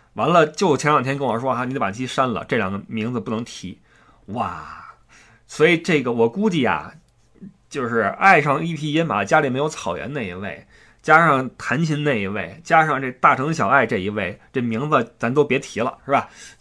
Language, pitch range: Chinese, 120-185 Hz